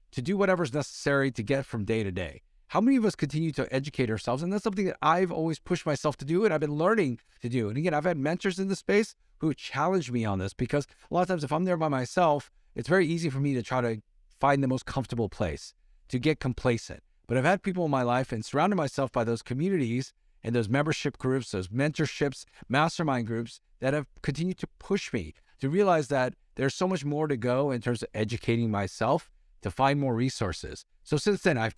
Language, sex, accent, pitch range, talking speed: English, male, American, 110-155 Hz, 230 wpm